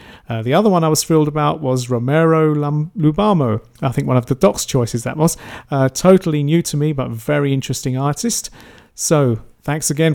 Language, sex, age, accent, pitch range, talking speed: English, male, 40-59, British, 130-160 Hz, 190 wpm